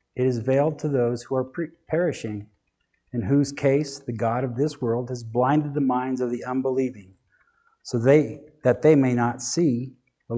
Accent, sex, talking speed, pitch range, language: American, male, 180 wpm, 115-140 Hz, English